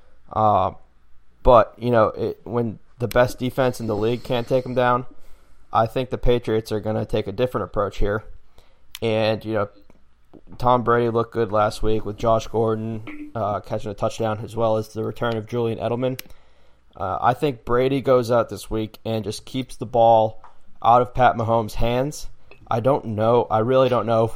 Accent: American